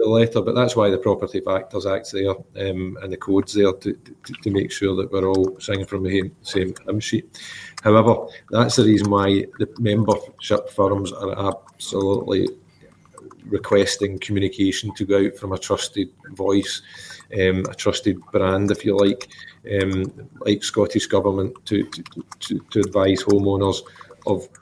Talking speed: 165 wpm